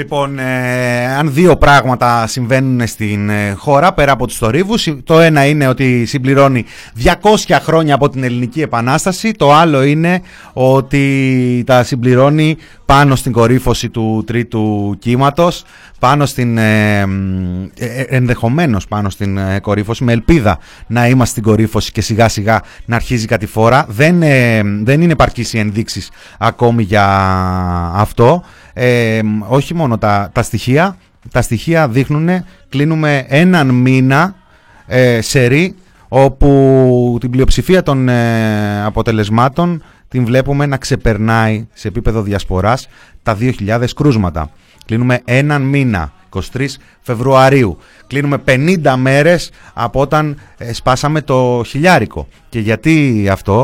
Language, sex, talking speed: Greek, male, 120 wpm